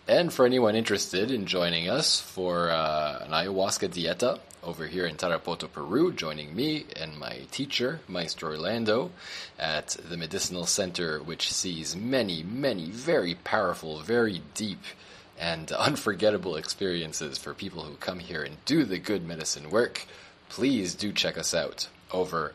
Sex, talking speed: male, 150 wpm